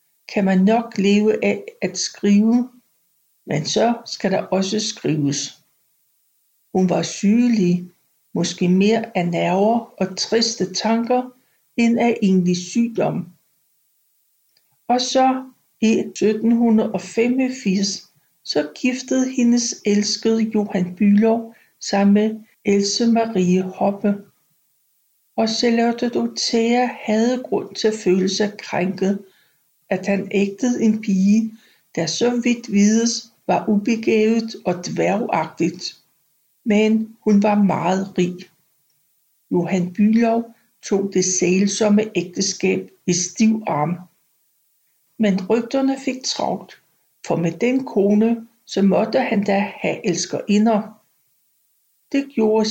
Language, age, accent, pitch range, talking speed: Danish, 60-79, native, 185-230 Hz, 110 wpm